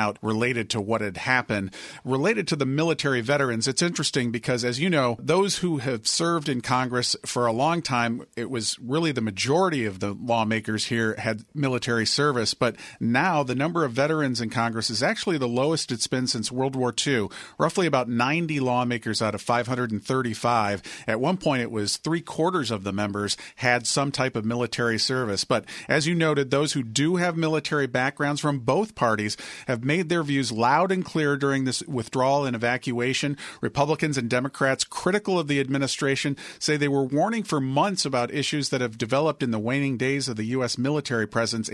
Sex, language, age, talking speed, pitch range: male, English, 40-59, 190 wpm, 115-145 Hz